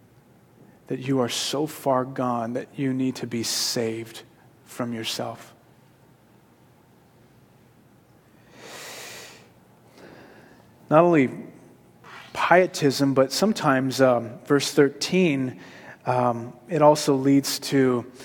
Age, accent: 30-49, American